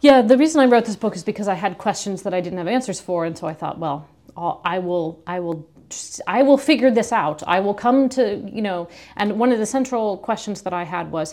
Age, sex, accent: 40-59, female, American